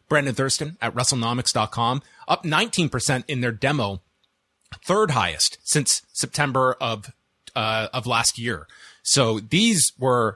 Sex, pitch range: male, 115-155 Hz